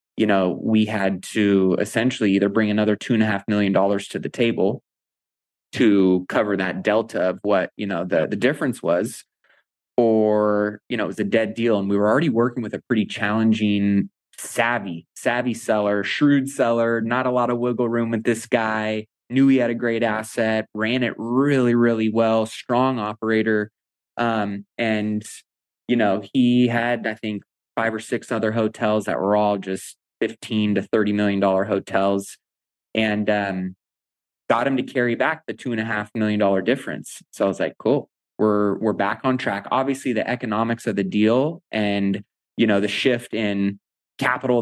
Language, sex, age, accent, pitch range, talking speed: English, male, 20-39, American, 100-120 Hz, 180 wpm